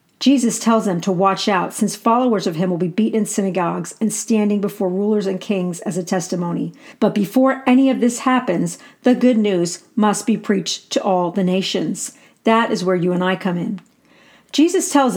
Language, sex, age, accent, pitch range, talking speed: English, female, 40-59, American, 185-235 Hz, 200 wpm